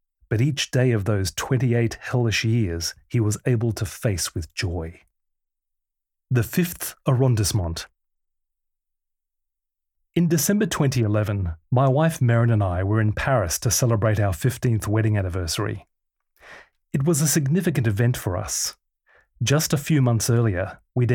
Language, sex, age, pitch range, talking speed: English, male, 30-49, 100-130 Hz, 135 wpm